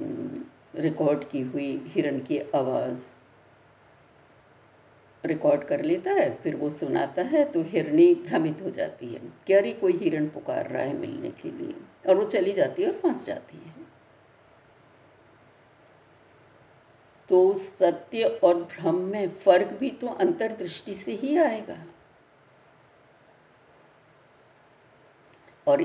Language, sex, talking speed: Hindi, female, 120 wpm